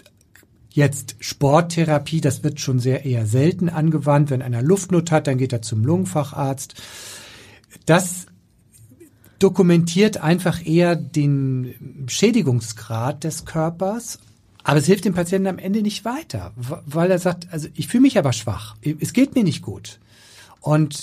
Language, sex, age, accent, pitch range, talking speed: German, male, 50-69, German, 135-170 Hz, 145 wpm